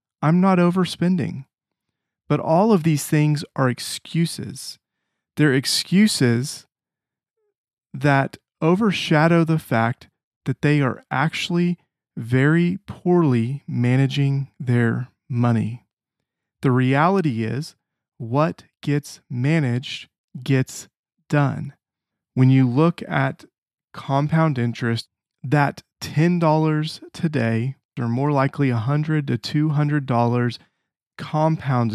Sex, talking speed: male, 90 wpm